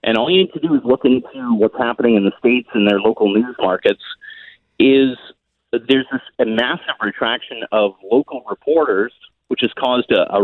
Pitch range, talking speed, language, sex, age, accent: 115-145 Hz, 195 wpm, English, male, 40-59, American